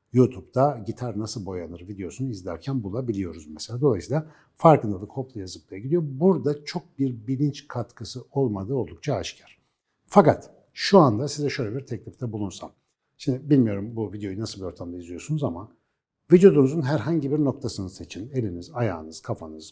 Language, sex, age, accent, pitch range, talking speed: Turkish, male, 60-79, native, 95-135 Hz, 140 wpm